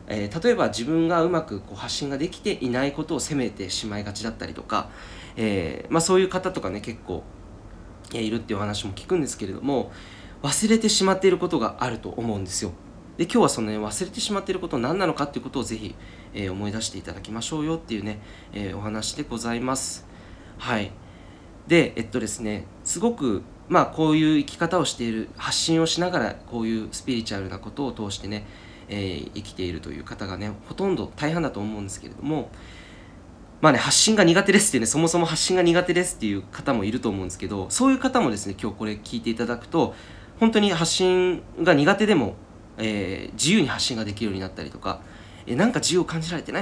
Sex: male